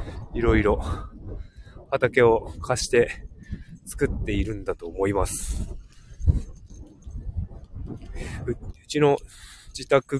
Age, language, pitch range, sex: 20-39, Japanese, 90-125 Hz, male